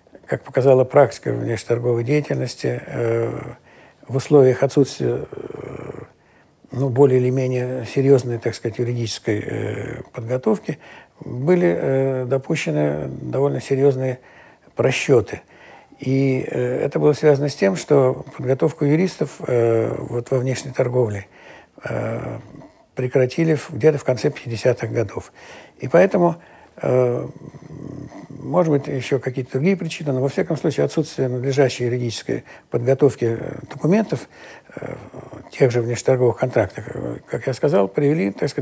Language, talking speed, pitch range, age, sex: Russian, 105 wpm, 120-145 Hz, 60-79, male